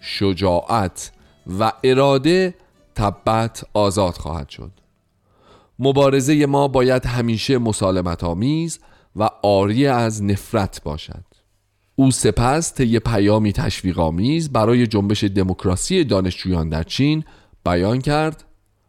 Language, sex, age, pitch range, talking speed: Persian, male, 40-59, 100-135 Hz, 95 wpm